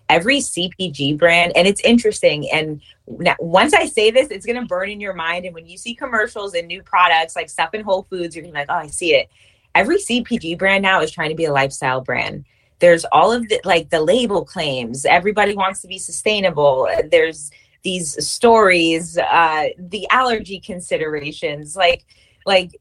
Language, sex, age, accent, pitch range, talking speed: English, female, 20-39, American, 155-230 Hz, 190 wpm